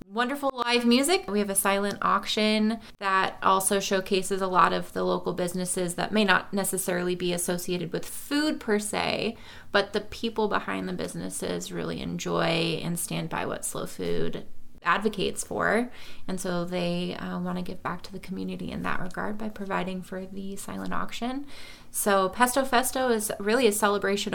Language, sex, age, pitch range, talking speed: English, female, 20-39, 180-215 Hz, 170 wpm